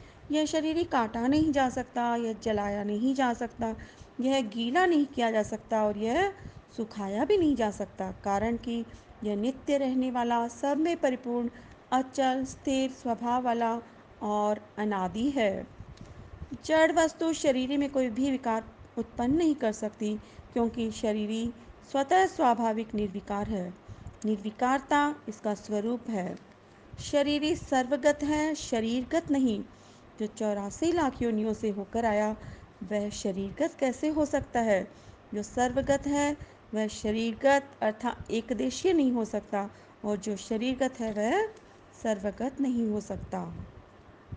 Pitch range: 220-285 Hz